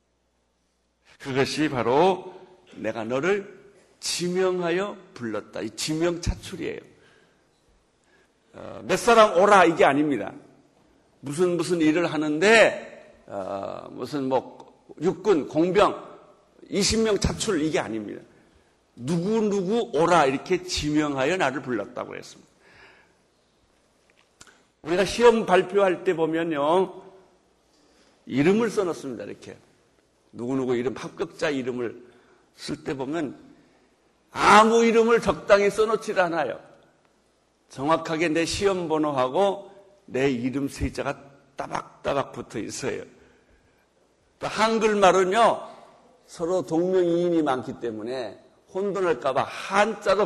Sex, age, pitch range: male, 60-79, 130-190 Hz